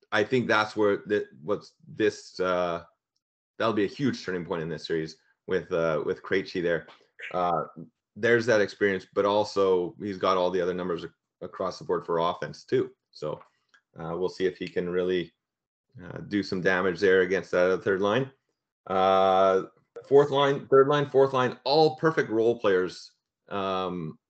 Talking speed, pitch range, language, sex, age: 170 wpm, 95-125 Hz, English, male, 30-49